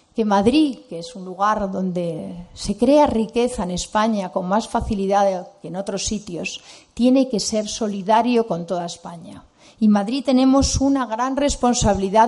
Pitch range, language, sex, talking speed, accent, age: 195-250 Hz, Spanish, female, 155 wpm, Spanish, 40-59